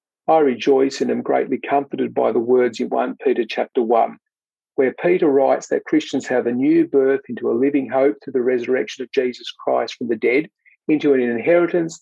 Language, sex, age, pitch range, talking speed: English, male, 50-69, 125-170 Hz, 195 wpm